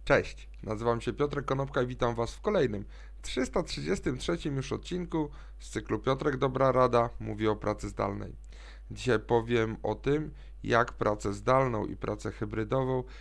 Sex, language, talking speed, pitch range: male, Polish, 145 wpm, 115-145 Hz